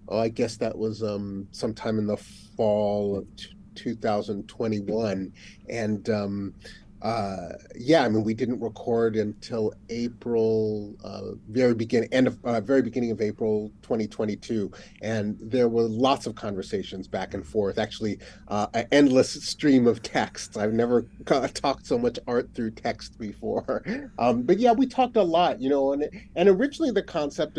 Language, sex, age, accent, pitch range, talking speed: English, male, 30-49, American, 105-150 Hz, 165 wpm